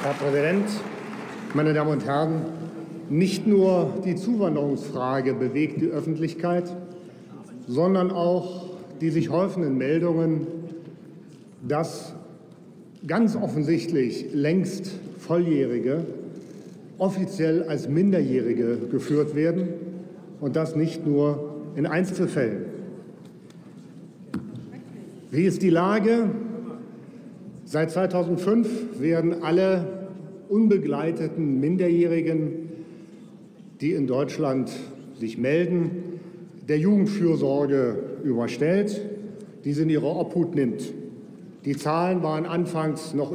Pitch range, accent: 150-185 Hz, German